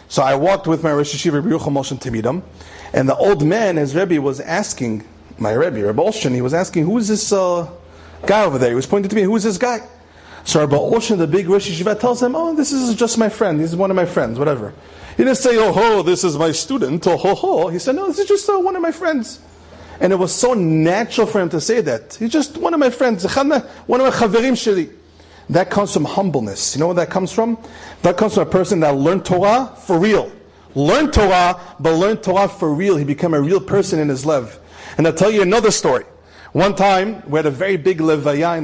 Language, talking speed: English, 250 wpm